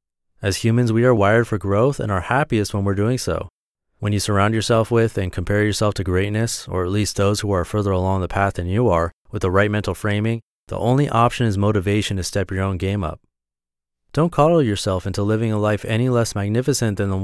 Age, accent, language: 30-49, American, English